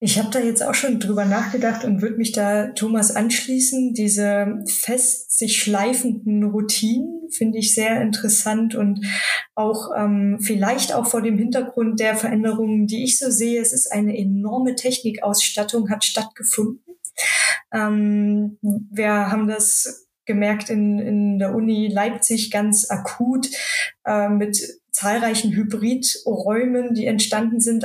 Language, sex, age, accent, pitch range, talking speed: German, female, 20-39, German, 210-240 Hz, 135 wpm